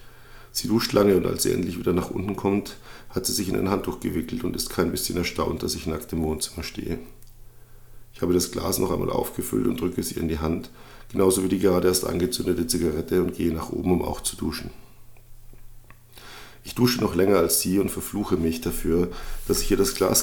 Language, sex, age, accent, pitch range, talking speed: German, male, 50-69, German, 85-120 Hz, 215 wpm